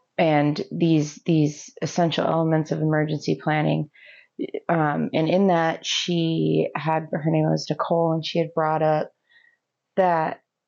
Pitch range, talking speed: 150-175 Hz, 135 wpm